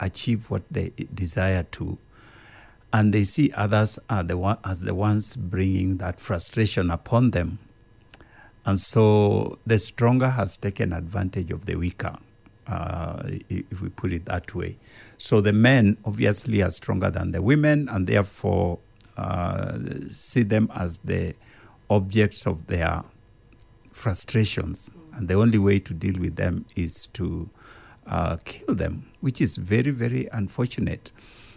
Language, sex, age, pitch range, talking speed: English, male, 60-79, 95-115 Hz, 135 wpm